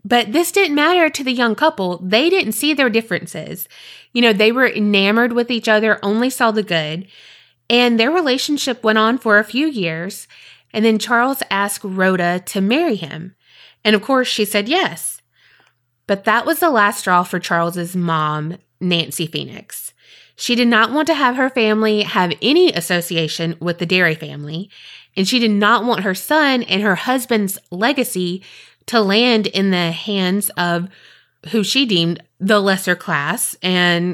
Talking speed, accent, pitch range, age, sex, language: 170 wpm, American, 175-235 Hz, 20-39, female, English